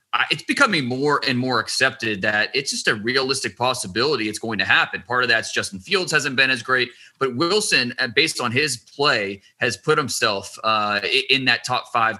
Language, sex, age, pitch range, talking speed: English, male, 30-49, 115-145 Hz, 190 wpm